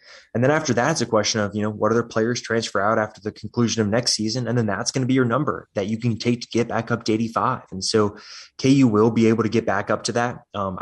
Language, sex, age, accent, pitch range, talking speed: English, male, 20-39, American, 105-115 Hz, 290 wpm